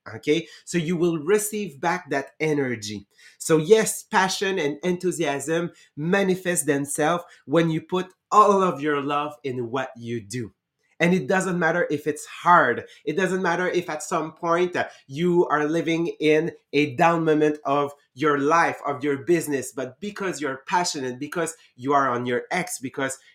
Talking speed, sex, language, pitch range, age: 165 wpm, male, English, 135-170 Hz, 30-49